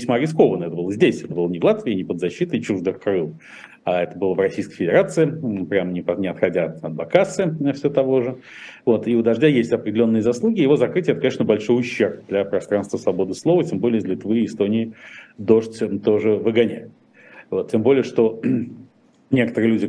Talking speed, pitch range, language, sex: 185 wpm, 95-120 Hz, Russian, male